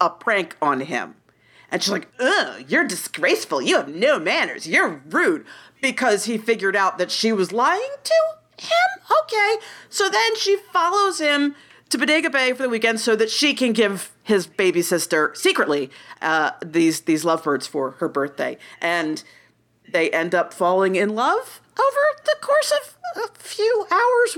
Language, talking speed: English, 165 wpm